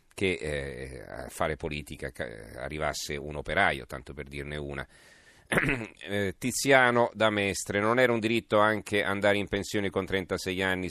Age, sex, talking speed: 40-59, male, 155 wpm